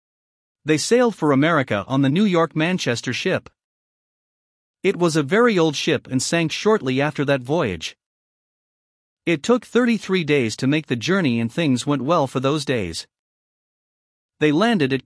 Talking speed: 160 wpm